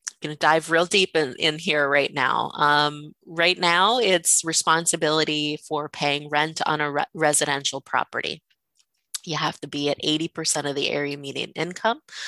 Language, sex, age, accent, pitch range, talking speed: English, female, 20-39, American, 145-170 Hz, 160 wpm